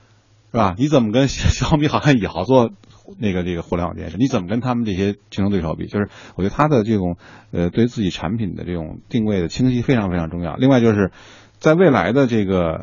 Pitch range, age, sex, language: 90-120 Hz, 50-69, male, Chinese